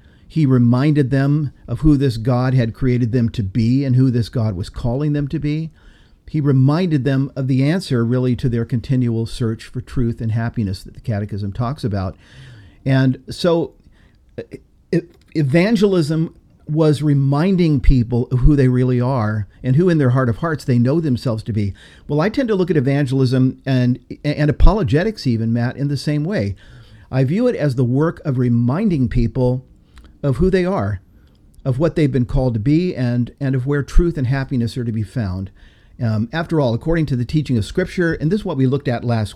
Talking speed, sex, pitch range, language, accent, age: 195 wpm, male, 115-150 Hz, English, American, 50-69